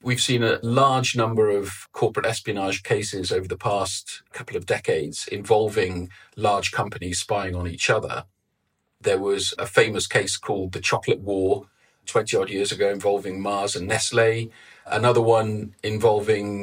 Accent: British